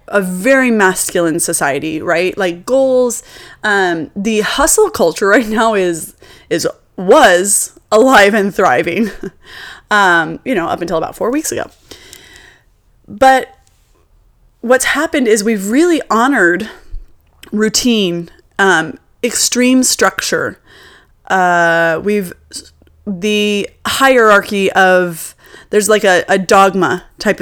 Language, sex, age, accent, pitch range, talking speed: English, female, 20-39, American, 180-235 Hz, 110 wpm